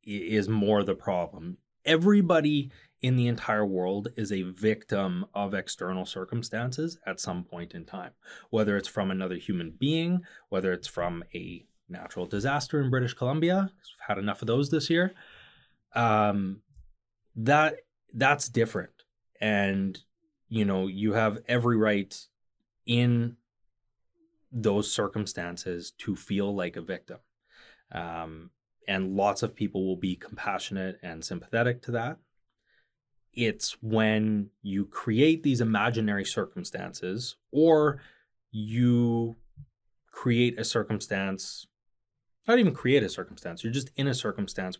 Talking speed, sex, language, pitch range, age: 125 wpm, male, English, 95-125 Hz, 20-39